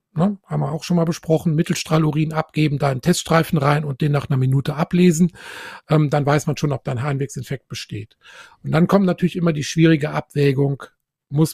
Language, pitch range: German, 145-170 Hz